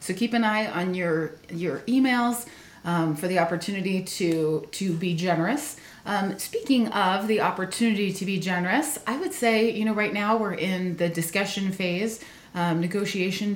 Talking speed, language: 170 wpm, English